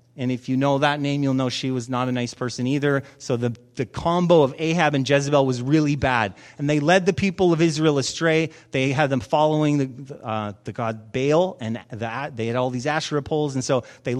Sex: male